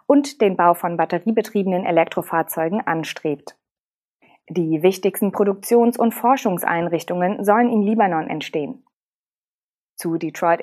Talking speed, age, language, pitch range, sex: 100 wpm, 20-39, German, 175-255 Hz, female